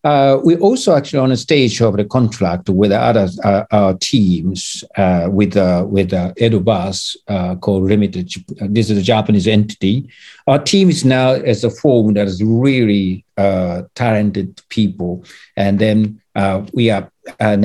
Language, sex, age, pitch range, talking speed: English, male, 60-79, 100-125 Hz, 165 wpm